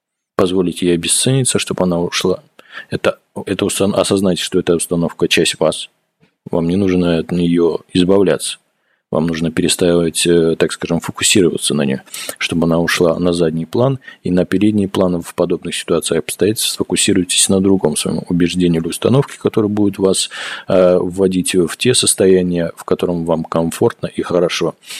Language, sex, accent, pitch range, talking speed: Russian, male, native, 85-100 Hz, 150 wpm